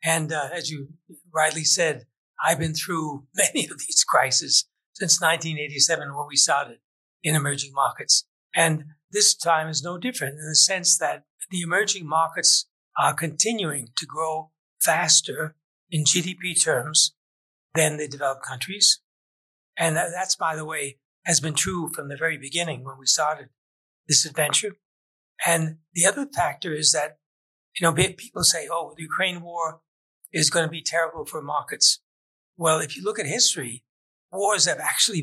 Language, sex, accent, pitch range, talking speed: English, male, American, 150-175 Hz, 160 wpm